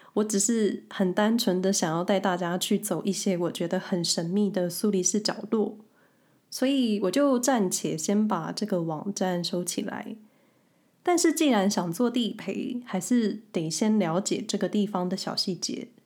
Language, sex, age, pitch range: Chinese, female, 20-39, 190-240 Hz